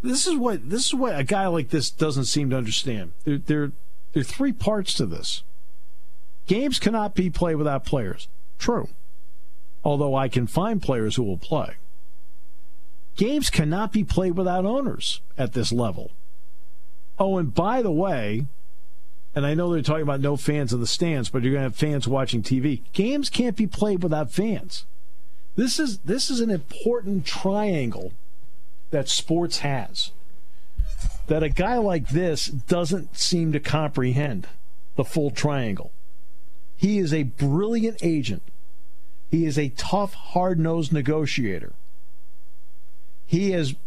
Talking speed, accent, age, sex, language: 150 wpm, American, 50-69, male, English